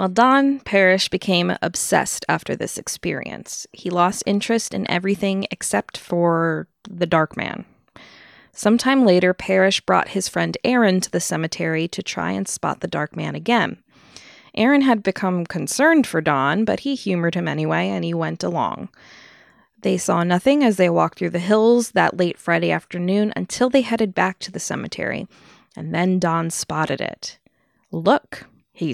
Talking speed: 160 wpm